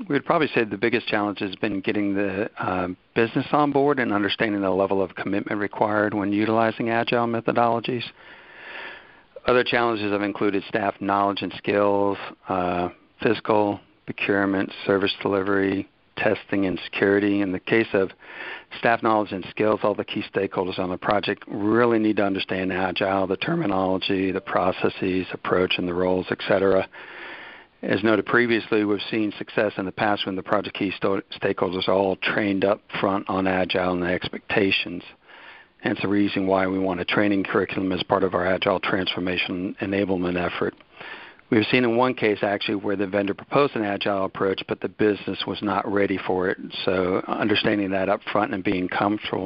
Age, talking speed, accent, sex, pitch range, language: 60-79, 170 wpm, American, male, 95-110 Hz, English